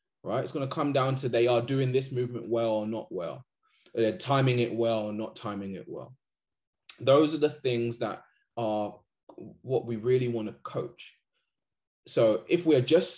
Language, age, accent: English, 20-39, British